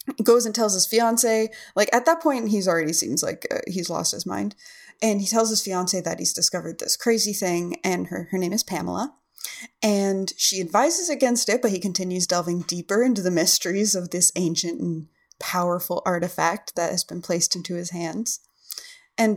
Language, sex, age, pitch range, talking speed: English, female, 20-39, 170-220 Hz, 190 wpm